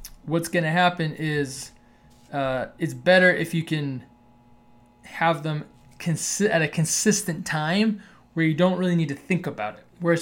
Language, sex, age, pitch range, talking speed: English, male, 20-39, 145-180 Hz, 170 wpm